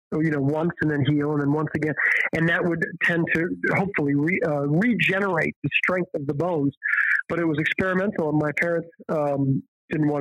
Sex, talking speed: male, 205 wpm